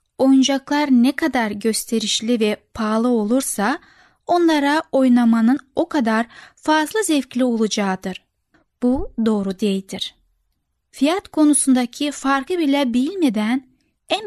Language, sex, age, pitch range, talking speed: Turkish, female, 10-29, 225-295 Hz, 95 wpm